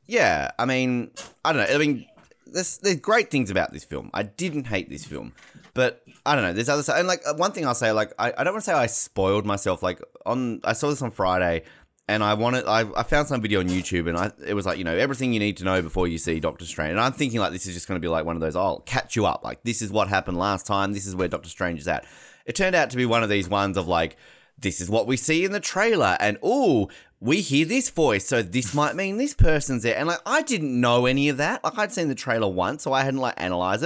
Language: English